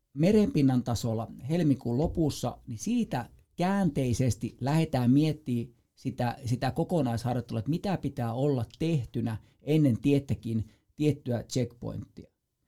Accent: native